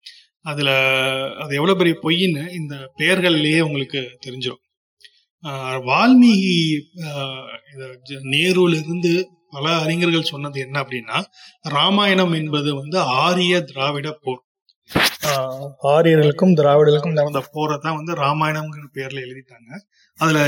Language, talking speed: Tamil, 95 wpm